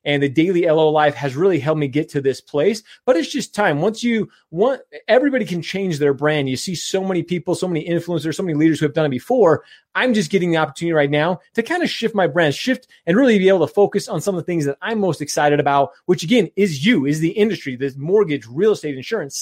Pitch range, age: 145-190 Hz, 30-49